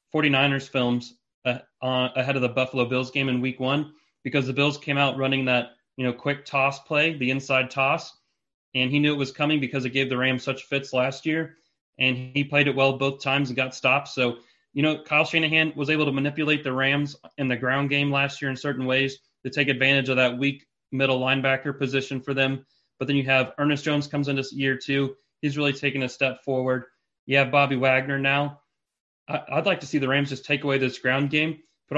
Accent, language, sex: American, English, male